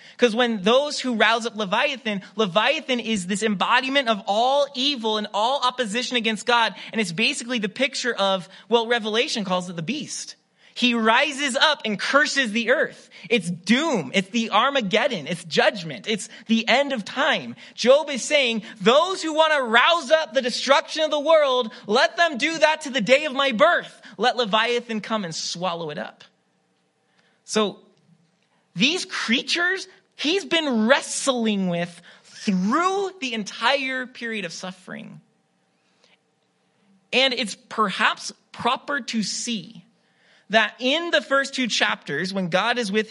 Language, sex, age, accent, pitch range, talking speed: English, male, 30-49, American, 200-265 Hz, 155 wpm